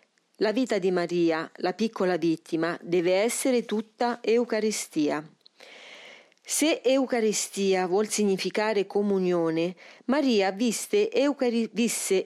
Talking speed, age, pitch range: 90 wpm, 40-59, 185-245 Hz